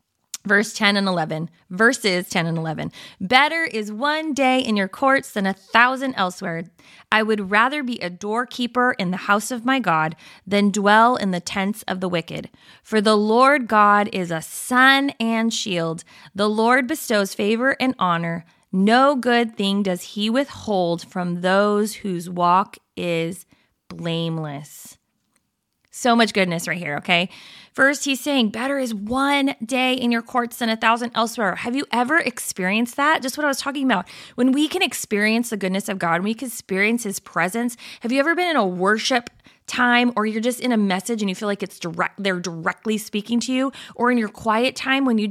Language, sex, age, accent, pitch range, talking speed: English, female, 20-39, American, 190-250 Hz, 190 wpm